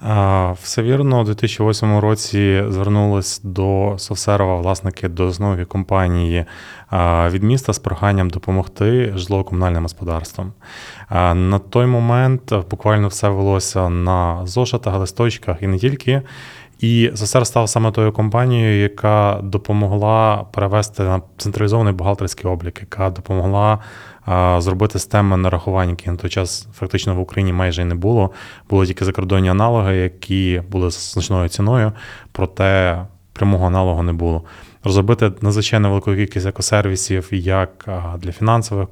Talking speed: 125 wpm